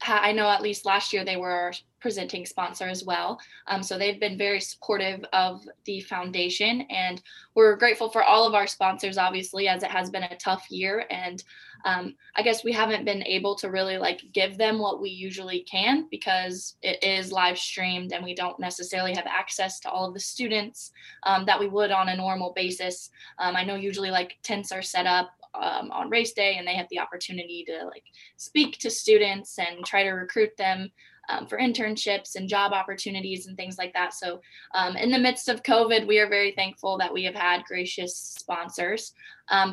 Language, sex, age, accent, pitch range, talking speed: English, female, 10-29, American, 185-215 Hz, 200 wpm